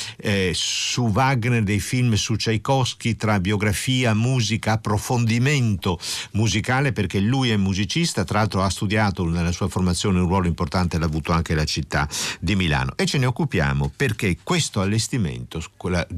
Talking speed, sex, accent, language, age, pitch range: 150 wpm, male, native, Italian, 50-69, 85-110 Hz